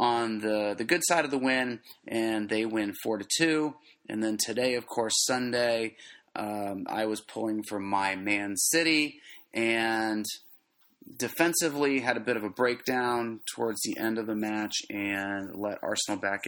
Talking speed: 170 wpm